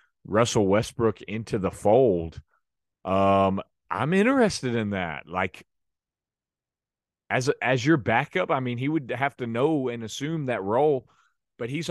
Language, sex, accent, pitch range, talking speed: English, male, American, 100-150 Hz, 140 wpm